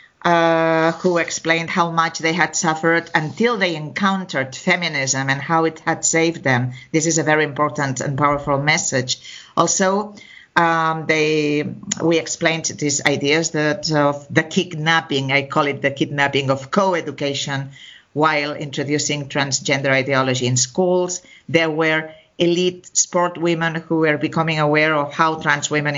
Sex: female